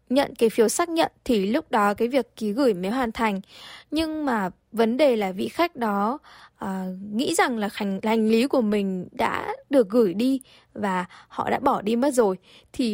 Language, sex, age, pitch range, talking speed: Vietnamese, female, 10-29, 215-275 Hz, 200 wpm